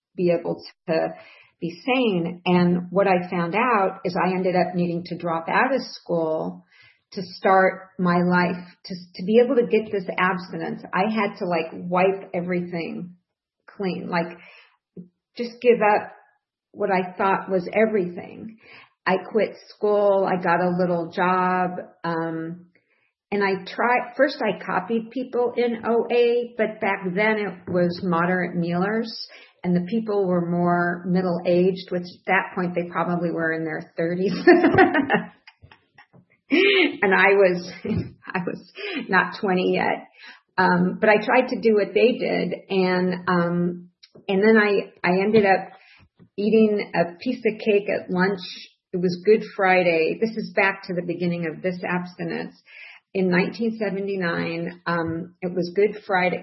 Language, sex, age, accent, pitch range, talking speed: English, female, 50-69, American, 175-215 Hz, 150 wpm